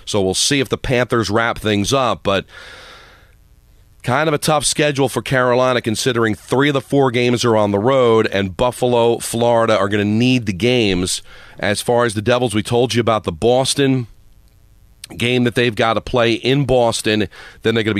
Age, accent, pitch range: 40-59, American, 100-130 Hz